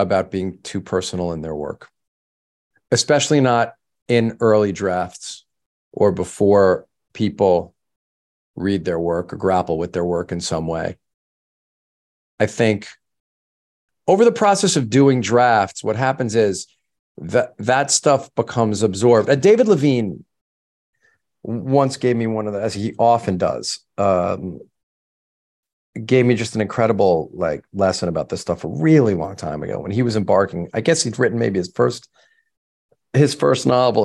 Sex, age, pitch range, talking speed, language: male, 40-59, 95-130 Hz, 150 wpm, English